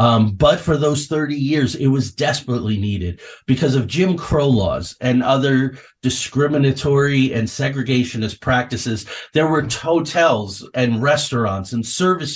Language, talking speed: English, 135 wpm